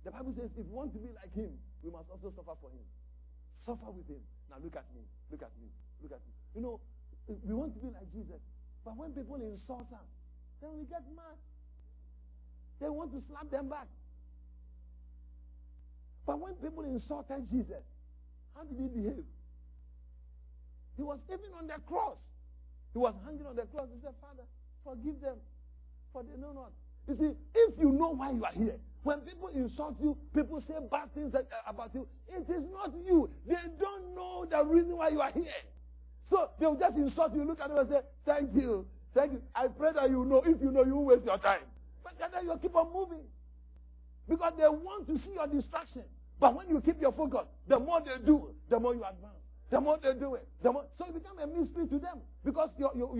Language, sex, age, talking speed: English, male, 50-69, 210 wpm